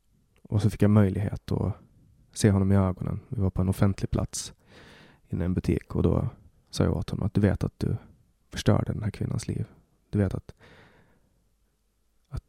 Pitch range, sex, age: 100-120 Hz, male, 30-49